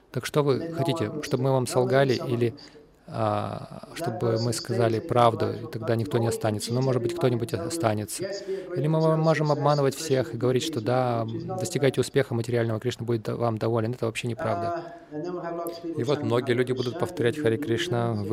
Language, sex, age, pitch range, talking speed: Russian, male, 20-39, 105-140 Hz, 170 wpm